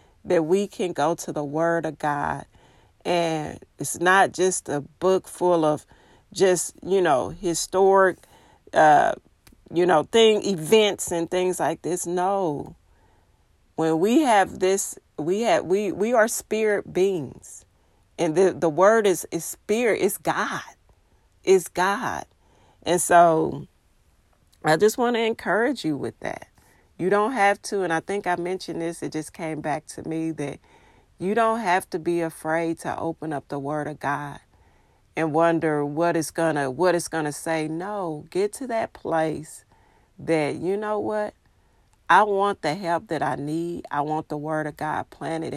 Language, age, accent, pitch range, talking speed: English, 40-59, American, 150-190 Hz, 165 wpm